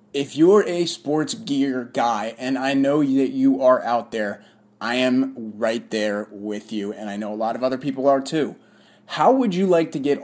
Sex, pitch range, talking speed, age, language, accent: male, 120-150 Hz, 210 wpm, 30-49, English, American